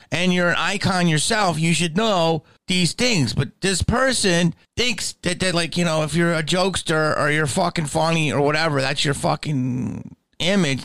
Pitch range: 125-170 Hz